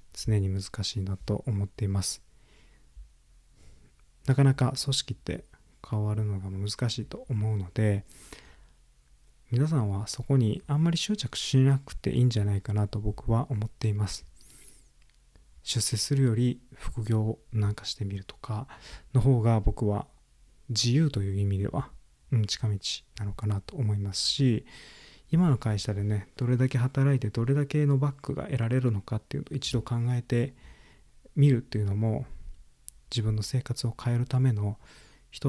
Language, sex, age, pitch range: Japanese, male, 20-39, 100-125 Hz